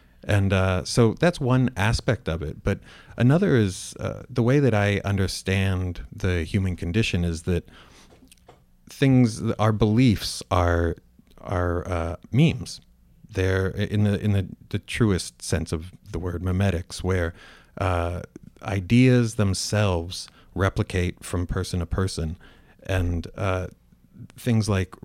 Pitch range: 90-110 Hz